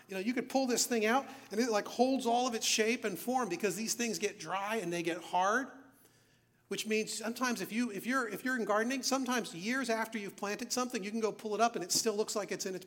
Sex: male